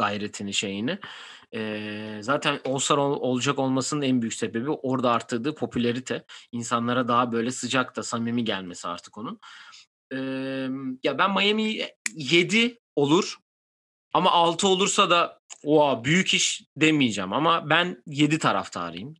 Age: 30-49